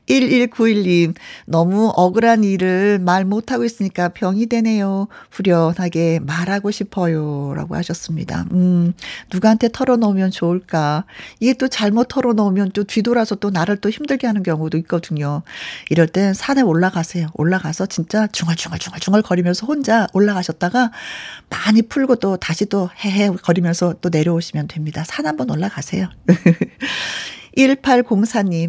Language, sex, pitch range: Korean, female, 170-230 Hz